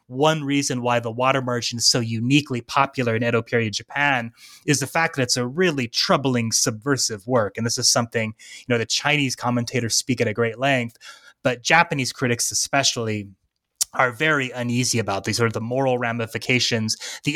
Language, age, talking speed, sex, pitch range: English, 30-49, 180 wpm, male, 115-130 Hz